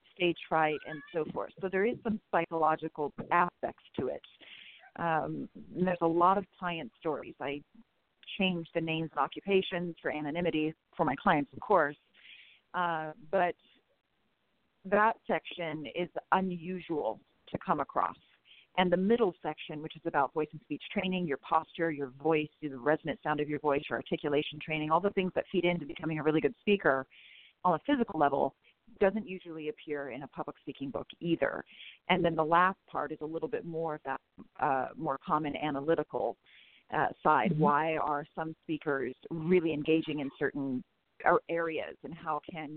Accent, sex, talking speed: American, female, 170 wpm